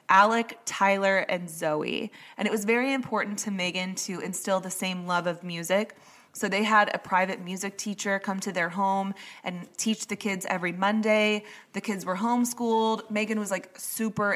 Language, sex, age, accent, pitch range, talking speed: English, female, 20-39, American, 185-220 Hz, 180 wpm